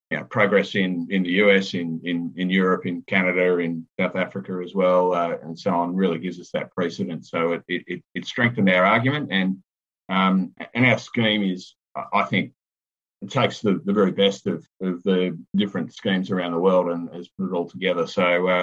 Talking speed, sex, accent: 210 wpm, male, Australian